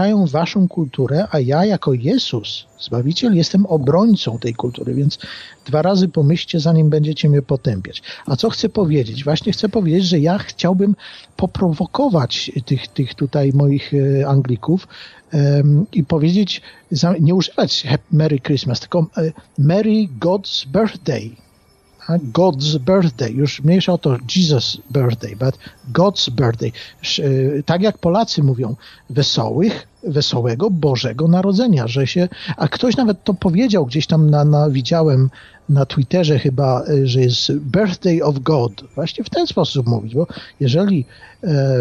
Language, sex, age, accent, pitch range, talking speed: Polish, male, 50-69, native, 140-185 Hz, 130 wpm